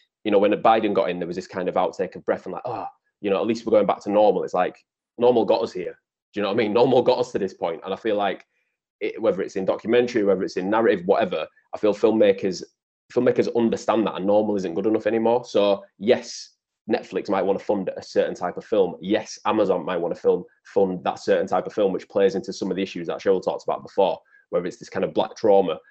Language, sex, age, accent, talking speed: English, male, 20-39, British, 260 wpm